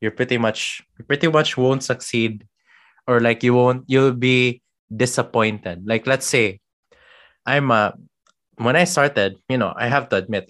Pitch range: 110-140 Hz